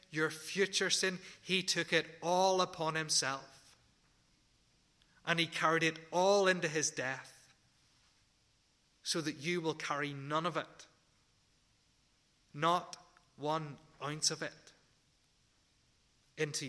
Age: 30-49